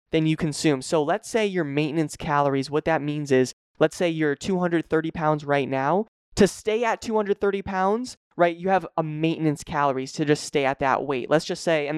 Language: English